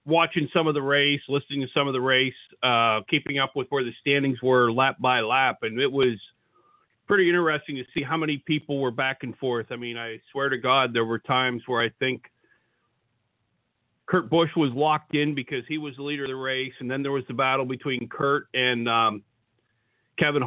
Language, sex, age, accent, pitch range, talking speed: English, male, 40-59, American, 130-160 Hz, 210 wpm